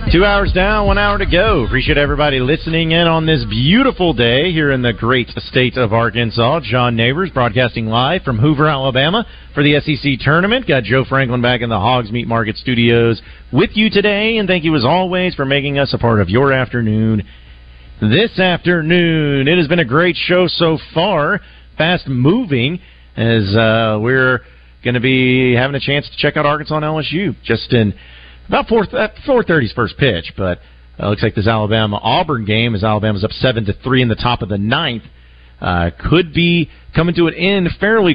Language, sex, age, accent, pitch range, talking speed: English, male, 40-59, American, 110-155 Hz, 190 wpm